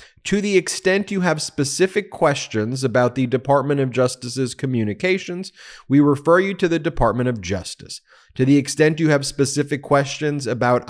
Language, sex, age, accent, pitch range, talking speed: English, male, 30-49, American, 110-145 Hz, 160 wpm